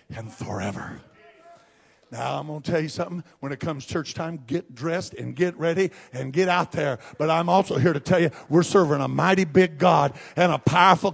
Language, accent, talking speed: English, American, 210 wpm